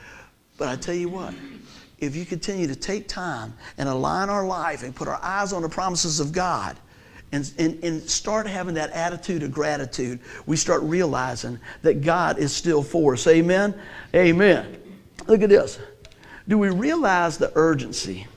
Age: 60-79